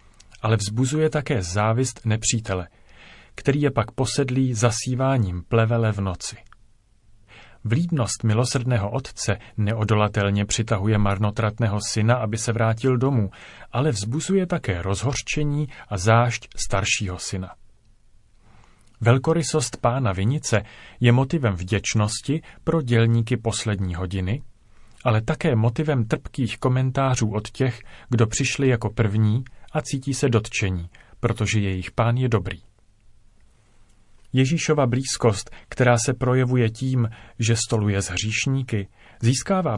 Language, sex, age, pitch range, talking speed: Czech, male, 30-49, 105-130 Hz, 110 wpm